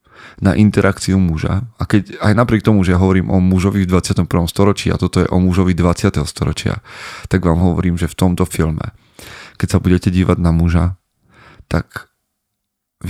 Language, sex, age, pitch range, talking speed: Slovak, male, 30-49, 85-100 Hz, 170 wpm